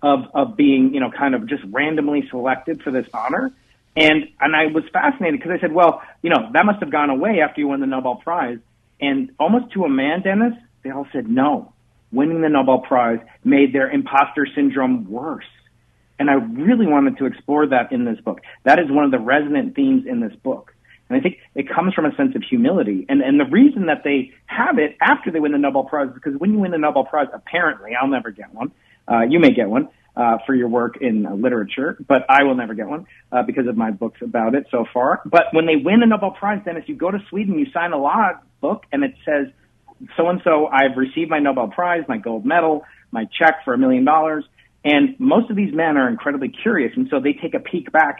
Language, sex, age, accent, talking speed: English, male, 40-59, American, 240 wpm